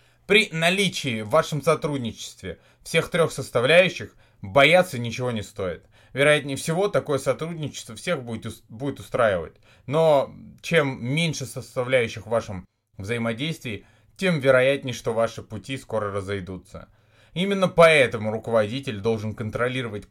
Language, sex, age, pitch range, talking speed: Russian, male, 20-39, 110-160 Hz, 115 wpm